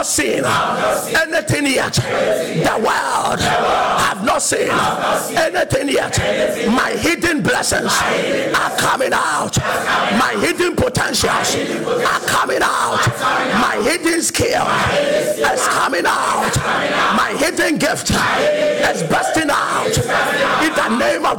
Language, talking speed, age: English, 110 wpm, 50-69